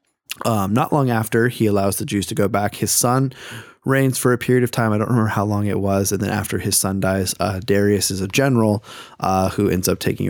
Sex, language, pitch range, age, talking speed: male, English, 105-125 Hz, 20-39, 245 wpm